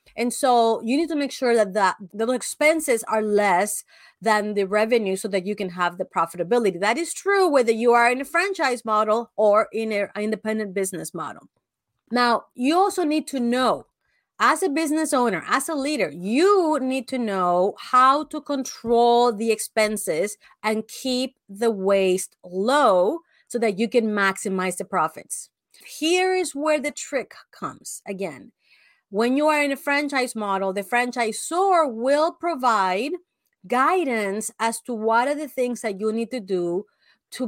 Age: 30-49